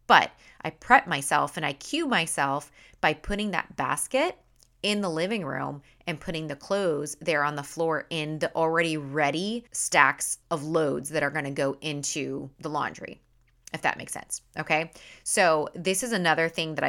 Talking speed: 180 wpm